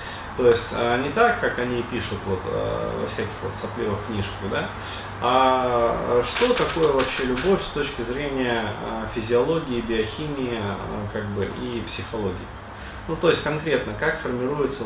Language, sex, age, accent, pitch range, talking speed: Russian, male, 30-49, native, 105-135 Hz, 135 wpm